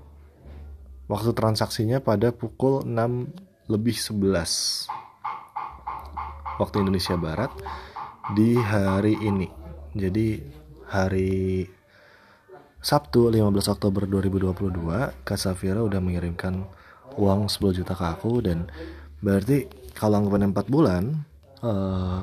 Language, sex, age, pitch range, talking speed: Indonesian, male, 20-39, 85-105 Hz, 90 wpm